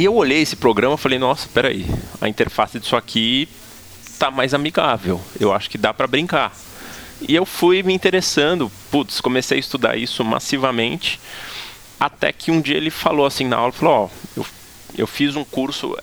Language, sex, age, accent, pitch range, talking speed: Portuguese, male, 20-39, Brazilian, 100-135 Hz, 180 wpm